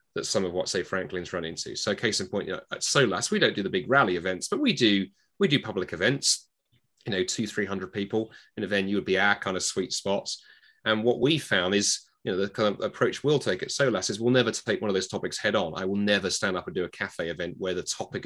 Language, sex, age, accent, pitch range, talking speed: English, male, 30-49, British, 90-105 Hz, 275 wpm